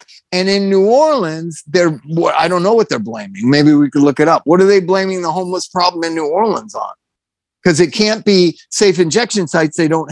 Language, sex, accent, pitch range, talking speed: English, male, American, 160-205 Hz, 220 wpm